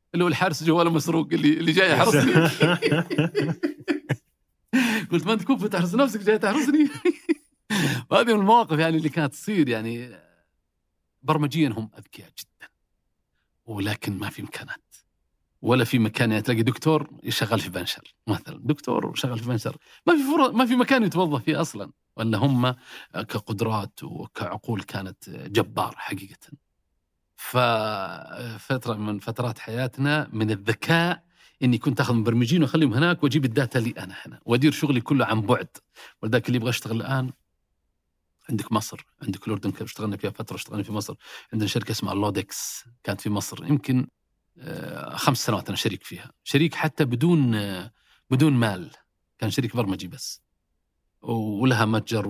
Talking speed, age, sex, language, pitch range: 140 wpm, 40-59, male, Arabic, 110-155 Hz